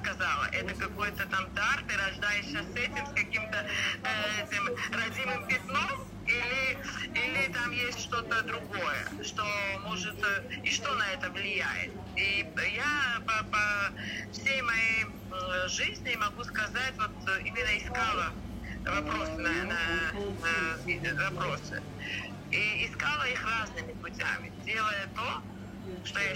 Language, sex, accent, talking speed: Russian, female, native, 125 wpm